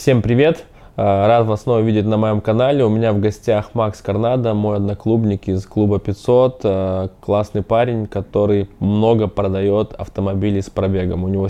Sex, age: male, 20-39